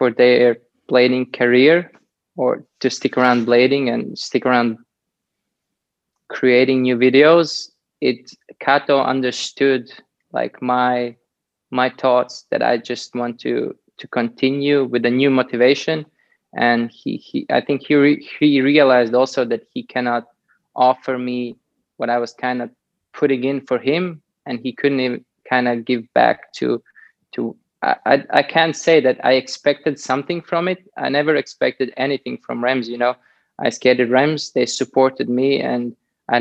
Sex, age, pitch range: male, 20-39, 120-135 Hz